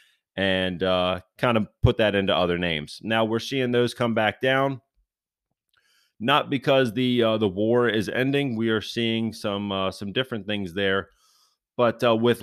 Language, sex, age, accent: English, male, 30-49, American